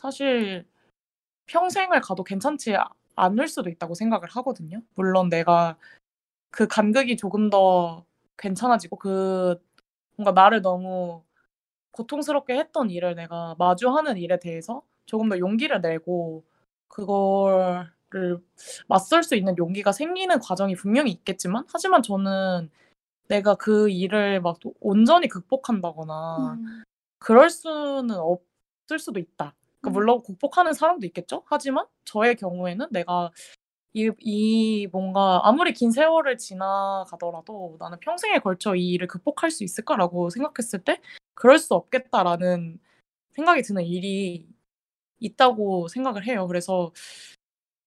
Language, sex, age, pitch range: Korean, female, 20-39, 180-250 Hz